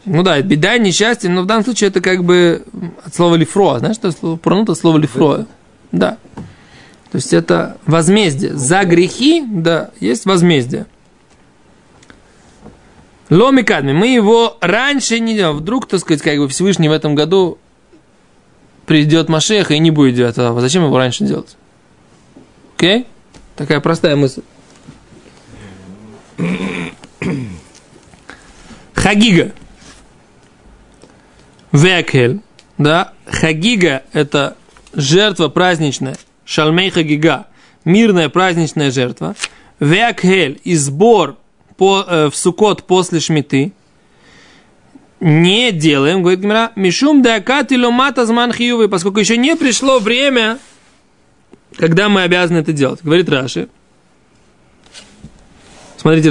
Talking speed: 105 wpm